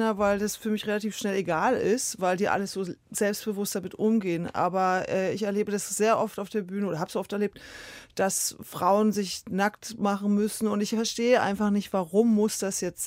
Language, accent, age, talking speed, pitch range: German, German, 30-49, 205 wpm, 195-220 Hz